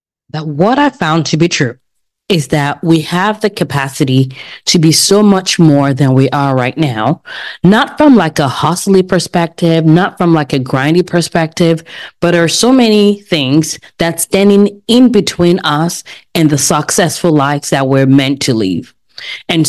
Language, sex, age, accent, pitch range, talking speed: English, female, 30-49, American, 160-215 Hz, 170 wpm